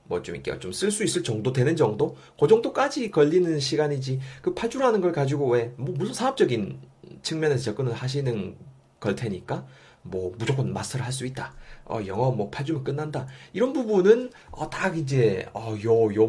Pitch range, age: 110-165 Hz, 30-49